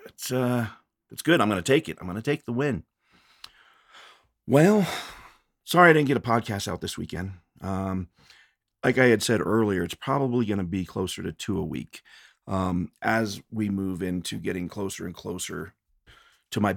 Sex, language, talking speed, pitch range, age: male, English, 185 wpm, 85-110 Hz, 40-59